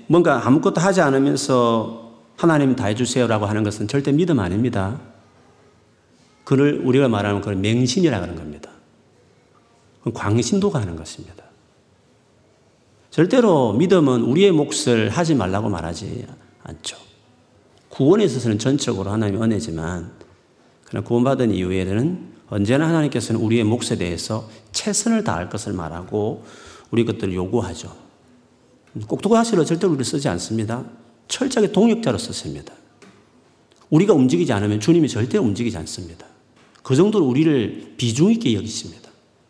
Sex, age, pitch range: male, 40-59, 100-155 Hz